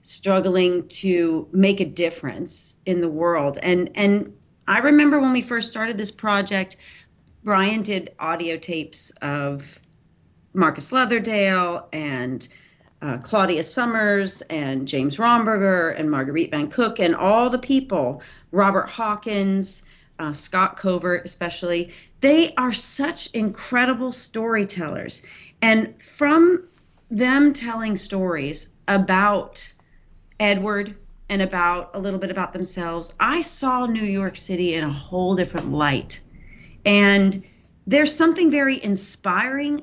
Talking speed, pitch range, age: 120 wpm, 175-225 Hz, 40-59